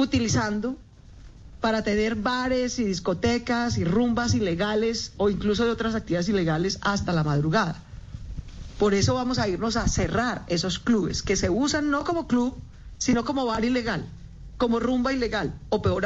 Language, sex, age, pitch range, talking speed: Spanish, female, 40-59, 190-255 Hz, 155 wpm